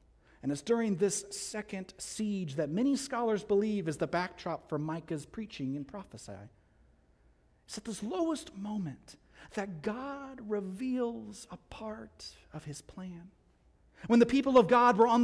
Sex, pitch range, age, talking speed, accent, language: male, 130-220 Hz, 40-59, 150 wpm, American, English